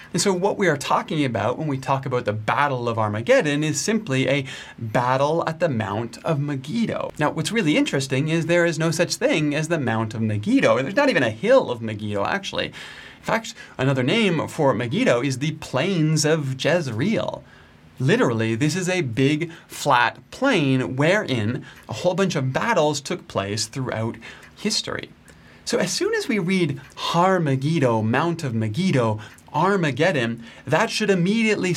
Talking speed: 170 wpm